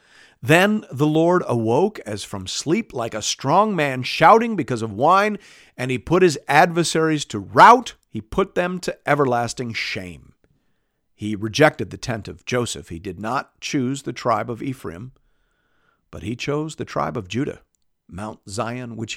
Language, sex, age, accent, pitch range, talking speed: English, male, 50-69, American, 105-145 Hz, 165 wpm